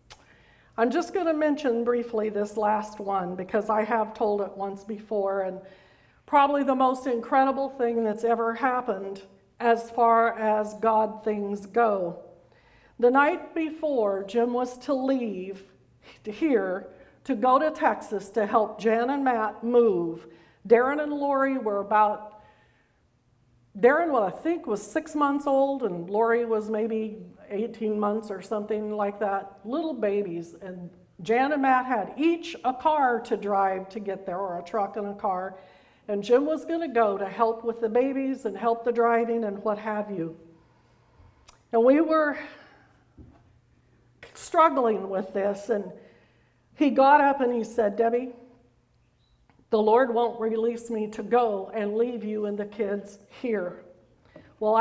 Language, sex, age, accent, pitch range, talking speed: English, female, 50-69, American, 205-255 Hz, 150 wpm